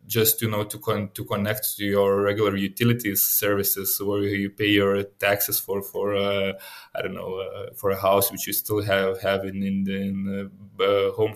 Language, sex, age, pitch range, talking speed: Polish, male, 20-39, 100-120 Hz, 195 wpm